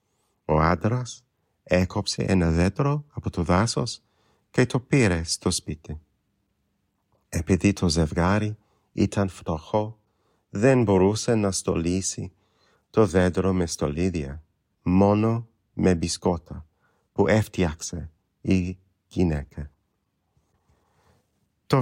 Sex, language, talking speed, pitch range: male, Greek, 95 wpm, 90-110 Hz